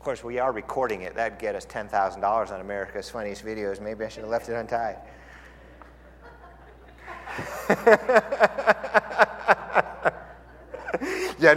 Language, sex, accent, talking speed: English, male, American, 120 wpm